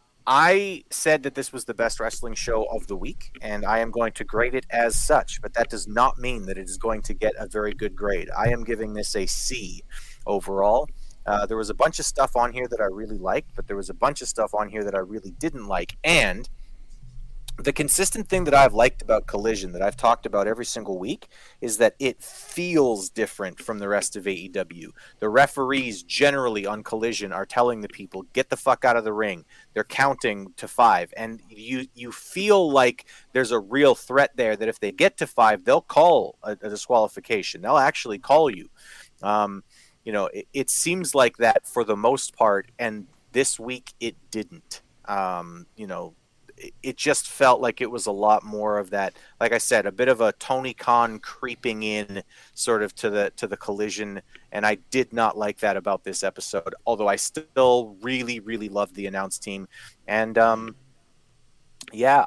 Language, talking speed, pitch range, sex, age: English, 205 wpm, 105-130 Hz, male, 30-49